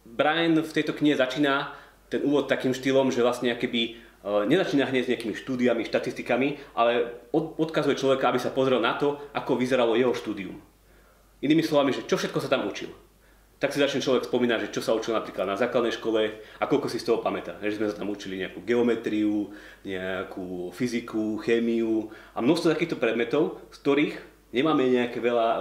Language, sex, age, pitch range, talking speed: Slovak, male, 30-49, 115-140 Hz, 175 wpm